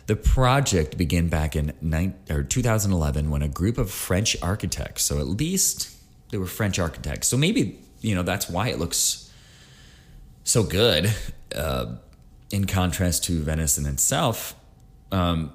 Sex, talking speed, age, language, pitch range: male, 150 wpm, 30-49, English, 75-95 Hz